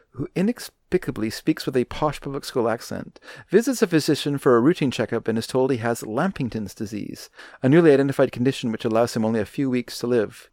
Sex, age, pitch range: male, 40-59, 115-145 Hz